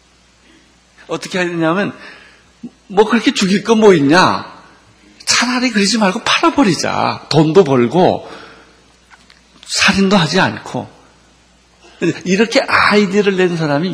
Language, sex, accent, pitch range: Korean, male, native, 130-200 Hz